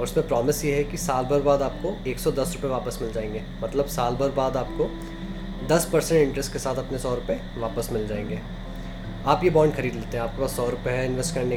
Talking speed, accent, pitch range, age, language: 230 wpm, native, 115-150 Hz, 20-39, Hindi